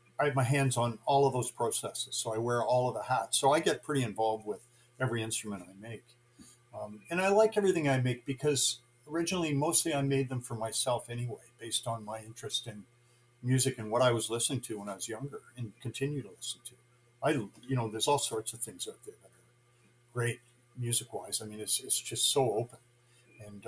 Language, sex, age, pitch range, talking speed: English, male, 50-69, 115-130 Hz, 220 wpm